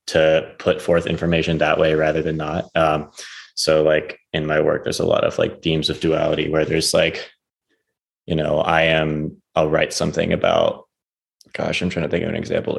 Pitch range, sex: 80-90 Hz, male